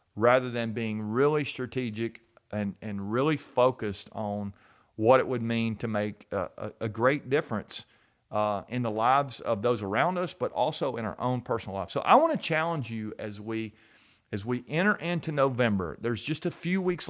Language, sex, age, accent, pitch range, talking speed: English, male, 40-59, American, 110-145 Hz, 190 wpm